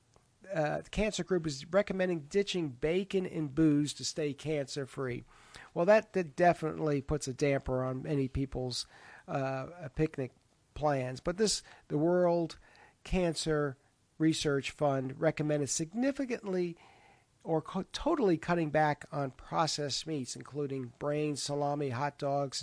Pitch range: 135-180 Hz